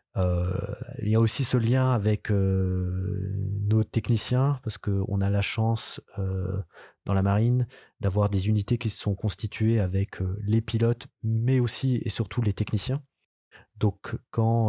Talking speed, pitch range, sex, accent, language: 155 wpm, 95-115 Hz, male, French, French